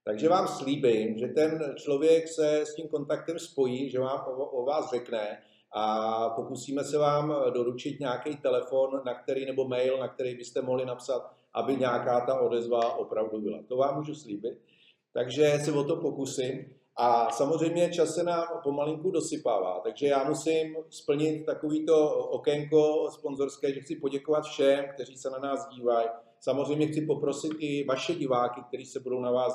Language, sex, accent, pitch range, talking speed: Czech, male, native, 130-150 Hz, 160 wpm